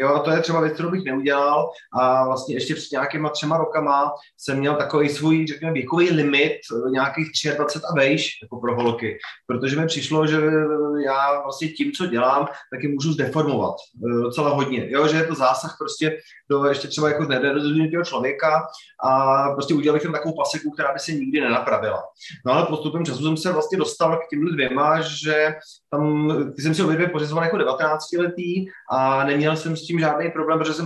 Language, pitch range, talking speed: Slovak, 135-155 Hz, 180 wpm